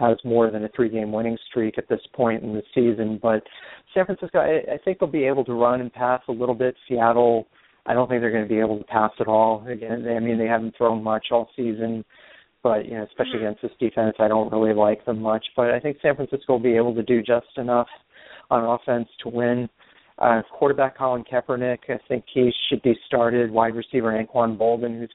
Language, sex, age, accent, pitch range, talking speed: English, male, 40-59, American, 115-125 Hz, 225 wpm